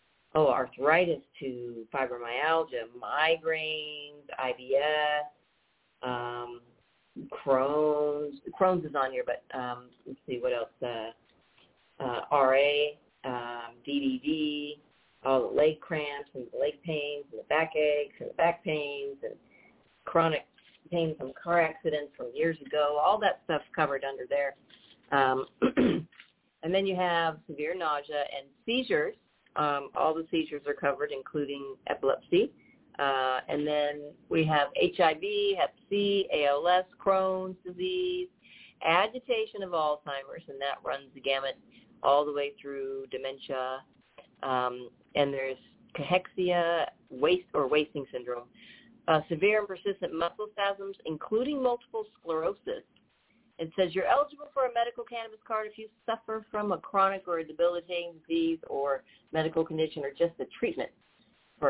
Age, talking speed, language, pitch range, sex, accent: 40-59, 135 wpm, English, 135-195 Hz, female, American